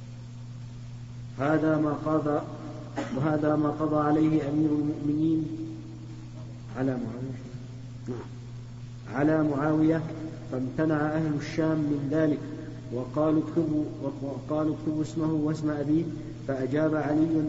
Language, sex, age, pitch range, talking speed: Arabic, male, 50-69, 140-155 Hz, 90 wpm